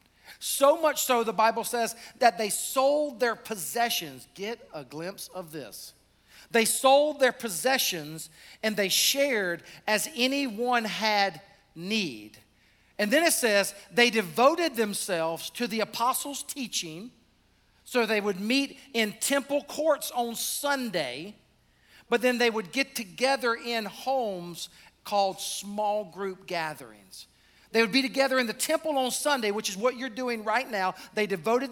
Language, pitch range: English, 180-250 Hz